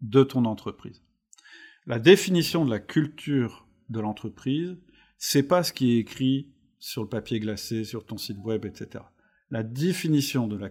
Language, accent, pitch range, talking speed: French, French, 115-150 Hz, 160 wpm